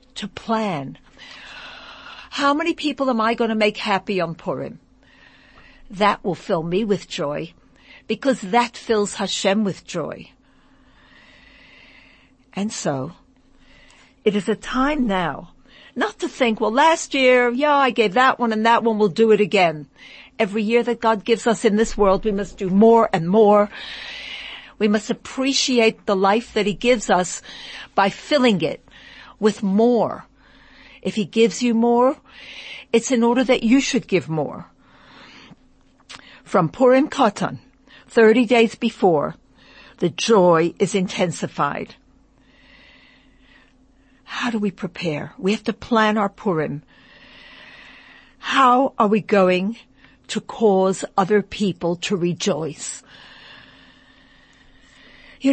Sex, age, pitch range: female, 60-79, 195-255 Hz